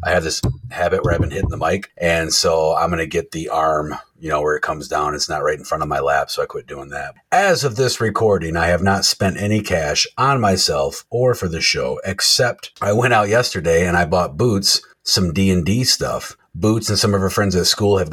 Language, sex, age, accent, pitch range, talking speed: English, male, 40-59, American, 80-100 Hz, 250 wpm